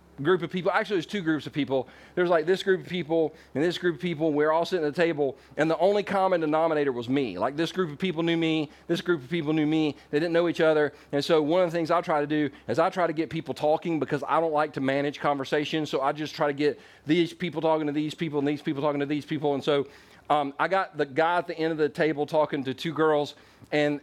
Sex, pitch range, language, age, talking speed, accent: male, 145-180 Hz, English, 40-59, 280 wpm, American